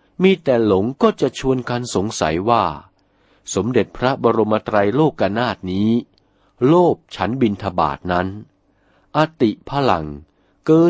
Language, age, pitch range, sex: Thai, 60-79, 95-150 Hz, male